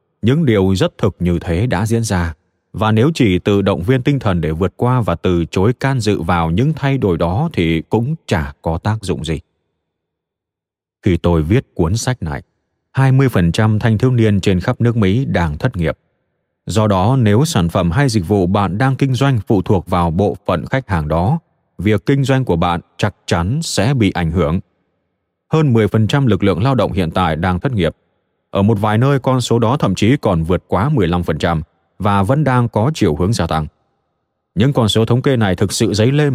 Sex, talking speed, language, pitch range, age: male, 210 wpm, Vietnamese, 85-125 Hz, 20-39